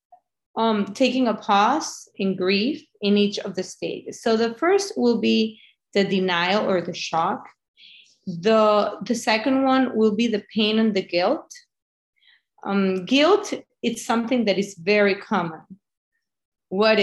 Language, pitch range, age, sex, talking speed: English, 180-235 Hz, 30-49, female, 145 wpm